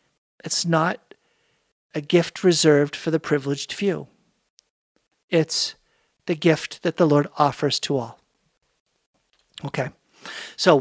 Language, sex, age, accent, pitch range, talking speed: English, male, 50-69, American, 150-180 Hz, 110 wpm